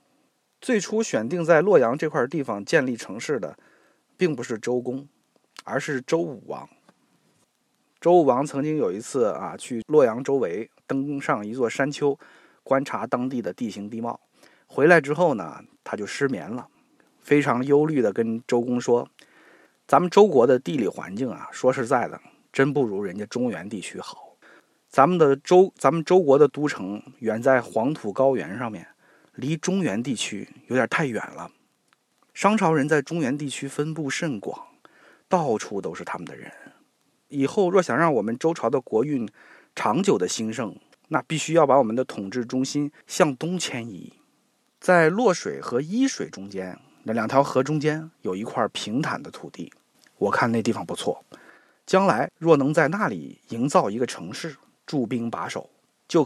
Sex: male